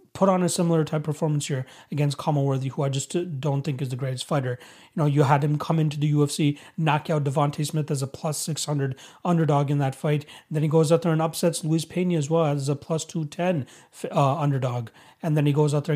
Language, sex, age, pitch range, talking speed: English, male, 30-49, 140-160 Hz, 240 wpm